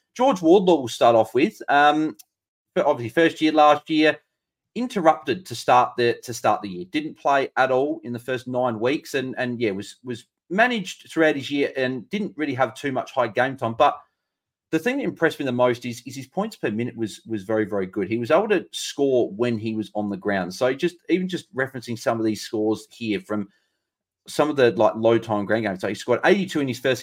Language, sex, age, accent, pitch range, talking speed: English, male, 30-49, Australian, 110-155 Hz, 235 wpm